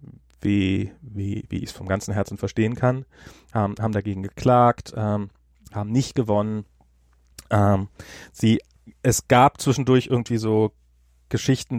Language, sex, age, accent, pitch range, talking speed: German, male, 30-49, German, 100-125 Hz, 115 wpm